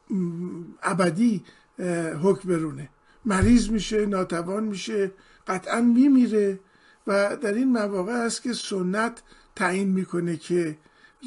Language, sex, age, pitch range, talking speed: Persian, male, 50-69, 180-225 Hz, 95 wpm